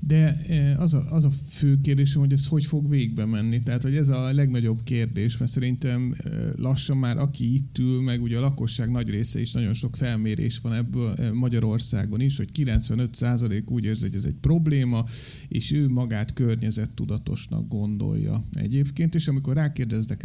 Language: Hungarian